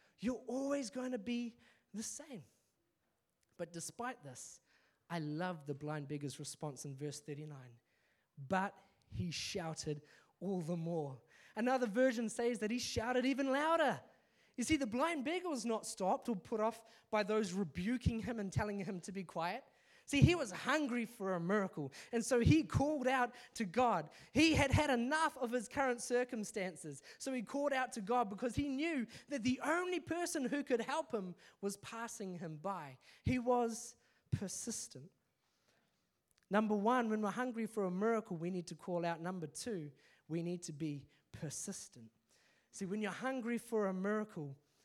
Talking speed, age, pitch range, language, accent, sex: 170 wpm, 20-39, 170-245 Hz, English, Australian, male